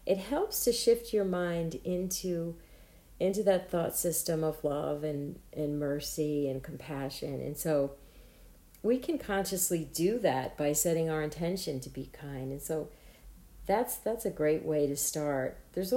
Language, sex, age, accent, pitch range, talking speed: English, female, 40-59, American, 150-180 Hz, 160 wpm